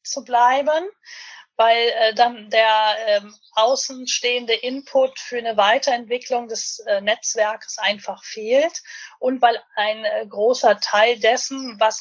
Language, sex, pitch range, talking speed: German, female, 220-275 Hz, 120 wpm